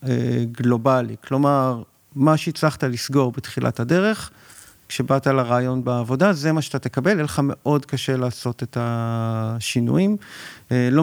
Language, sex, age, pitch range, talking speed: Hebrew, male, 40-59, 125-160 Hz, 120 wpm